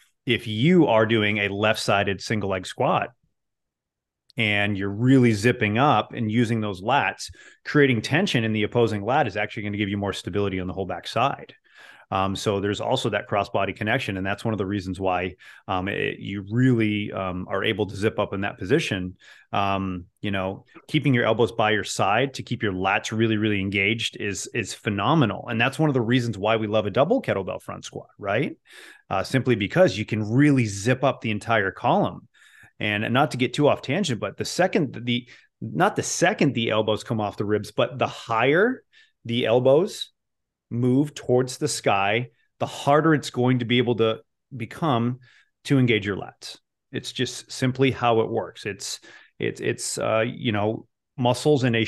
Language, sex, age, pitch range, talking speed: English, male, 30-49, 105-130 Hz, 190 wpm